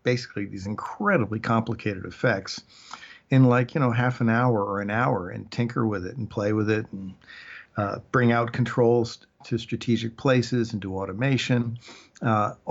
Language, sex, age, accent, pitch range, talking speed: English, male, 50-69, American, 110-130 Hz, 165 wpm